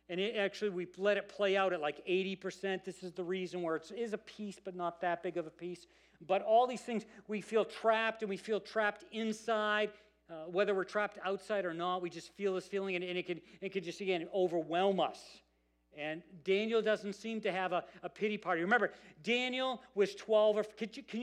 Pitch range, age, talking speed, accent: 150-200 Hz, 50-69, 225 wpm, American